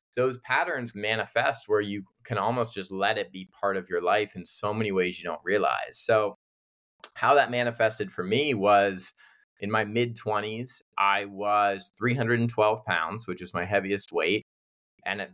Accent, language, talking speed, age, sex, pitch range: American, English, 170 wpm, 20-39, male, 100-120 Hz